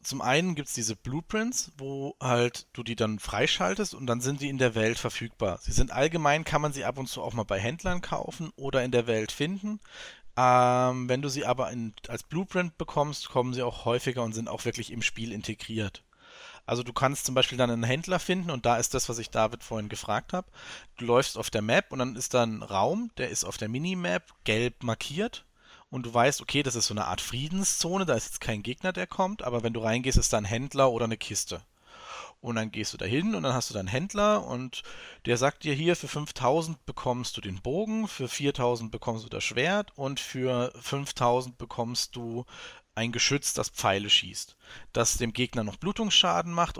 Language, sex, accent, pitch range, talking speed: German, male, German, 115-145 Hz, 215 wpm